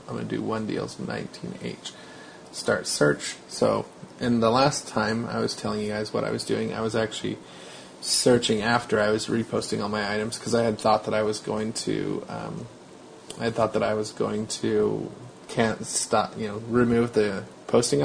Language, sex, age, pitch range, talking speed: English, male, 30-49, 100-115 Hz, 195 wpm